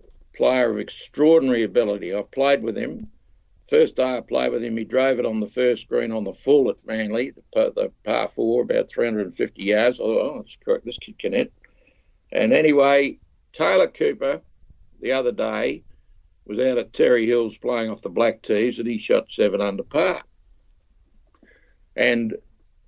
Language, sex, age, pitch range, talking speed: English, male, 60-79, 105-145 Hz, 165 wpm